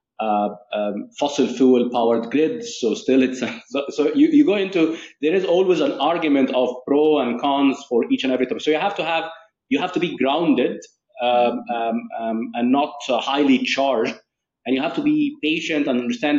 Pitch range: 125-175 Hz